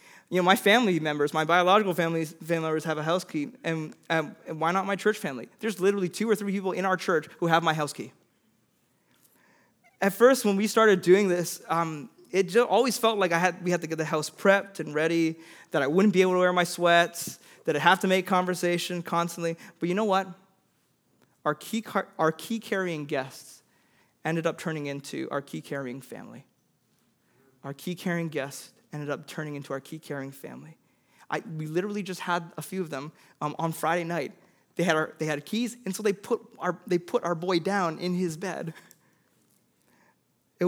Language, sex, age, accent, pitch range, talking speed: English, male, 20-39, American, 155-190 Hz, 195 wpm